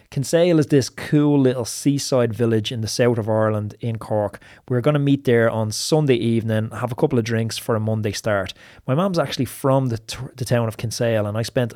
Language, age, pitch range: English, 20-39, 110-130 Hz